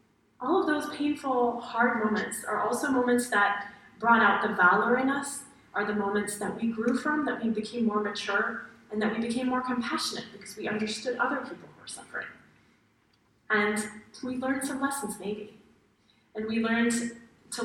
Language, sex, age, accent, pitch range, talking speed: Finnish, female, 30-49, American, 215-290 Hz, 175 wpm